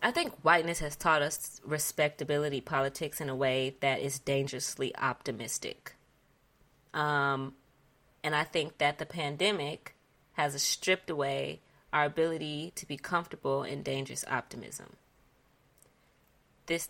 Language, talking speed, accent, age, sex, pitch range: English, 120 wpm, American, 20-39, female, 135-160 Hz